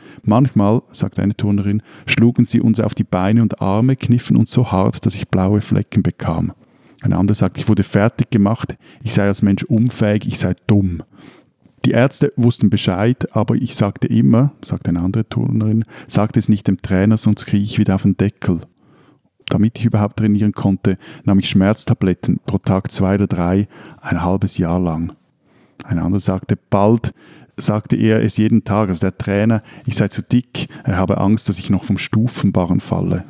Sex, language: male, German